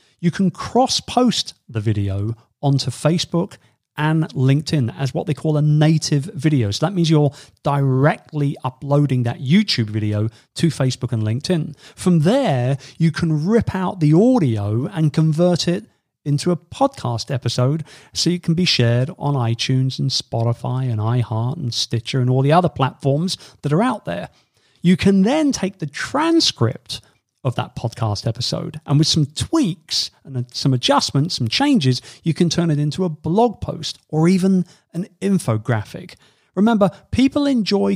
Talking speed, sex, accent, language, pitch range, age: 160 wpm, male, British, English, 125-170 Hz, 40-59